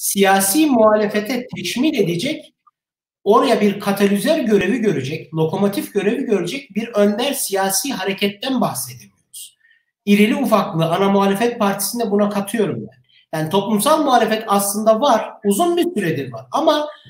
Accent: native